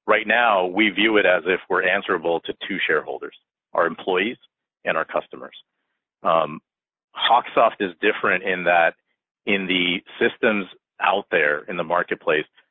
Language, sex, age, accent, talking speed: English, male, 40-59, American, 145 wpm